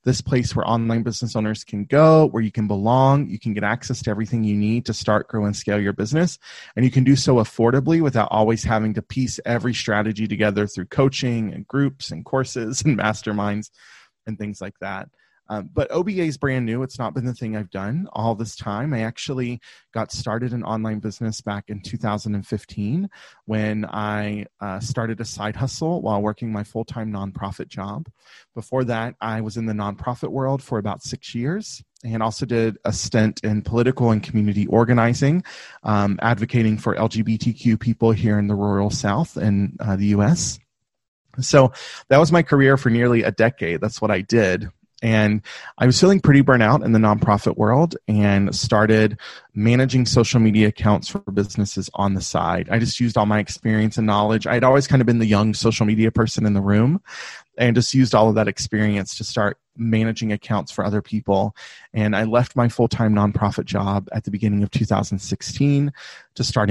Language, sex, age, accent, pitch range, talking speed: English, male, 30-49, American, 105-125 Hz, 190 wpm